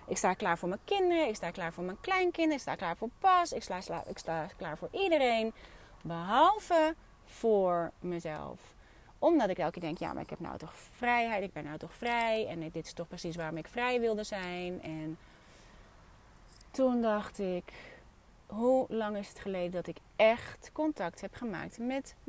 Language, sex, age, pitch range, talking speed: Dutch, female, 30-49, 185-265 Hz, 185 wpm